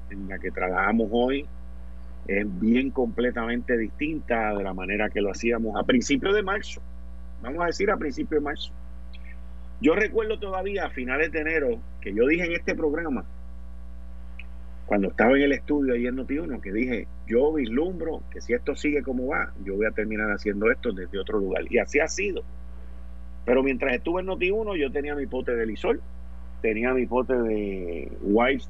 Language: Spanish